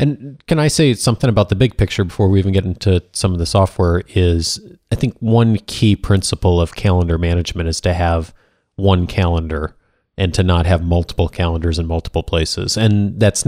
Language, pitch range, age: English, 85-105 Hz, 30-49